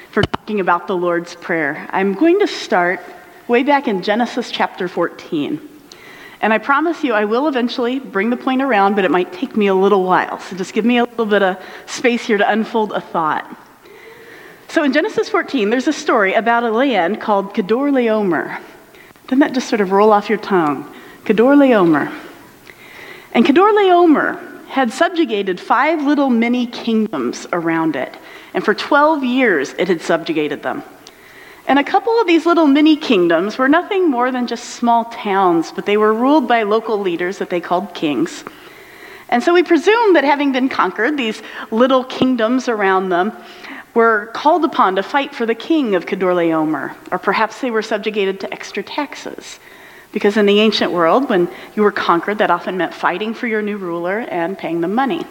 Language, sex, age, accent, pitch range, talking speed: English, female, 40-59, American, 200-310 Hz, 180 wpm